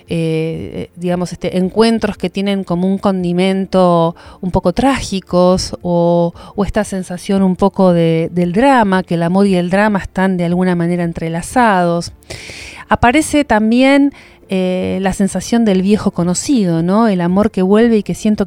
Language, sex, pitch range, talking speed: Spanish, female, 175-215 Hz, 155 wpm